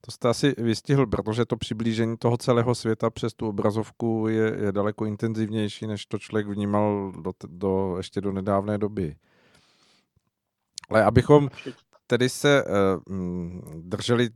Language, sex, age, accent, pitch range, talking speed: Czech, male, 40-59, native, 100-115 Hz, 125 wpm